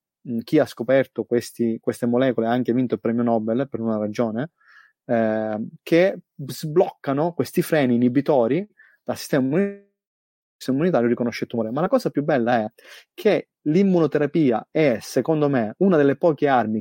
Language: Italian